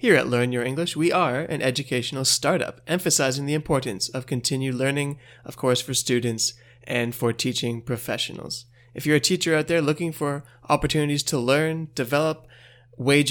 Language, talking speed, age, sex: English, 165 wpm, 20-39, male